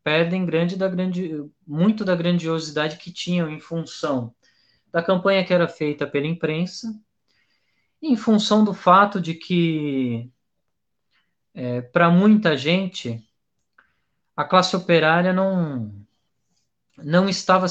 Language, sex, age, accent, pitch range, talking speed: Portuguese, male, 20-39, Brazilian, 145-185 Hz, 100 wpm